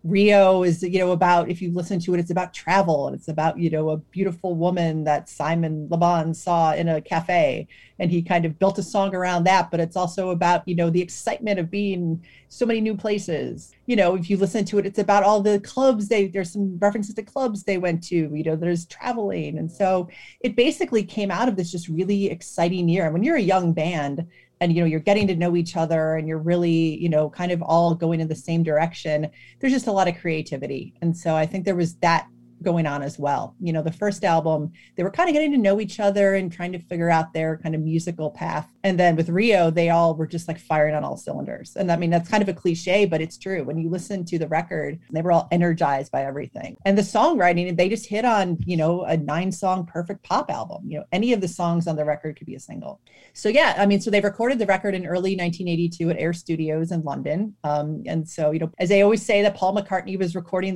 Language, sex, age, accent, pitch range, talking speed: English, female, 30-49, American, 165-195 Hz, 250 wpm